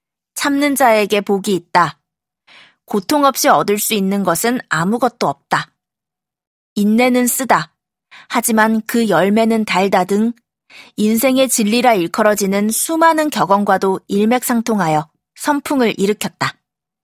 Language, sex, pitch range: Korean, female, 195-255 Hz